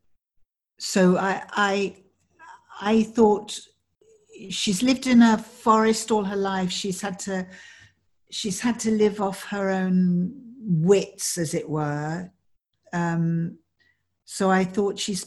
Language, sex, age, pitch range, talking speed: English, female, 60-79, 170-210 Hz, 125 wpm